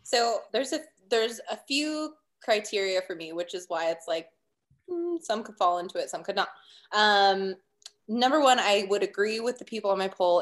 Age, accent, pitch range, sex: 20-39, American, 185-225 Hz, female